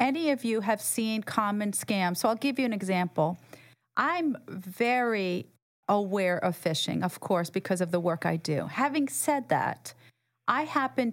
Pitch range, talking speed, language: 170-225 Hz, 165 wpm, English